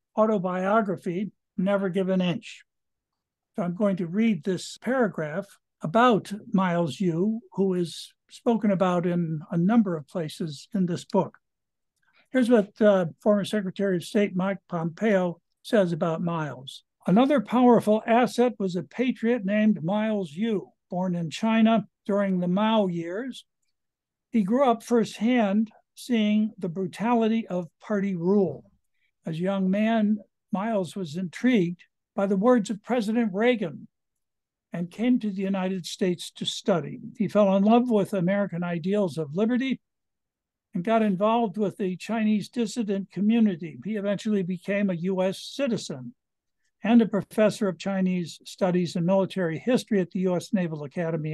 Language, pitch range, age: English, 185-220 Hz, 60-79